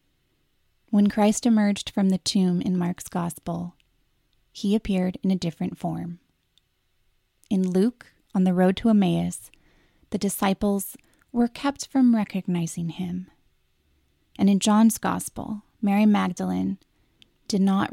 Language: English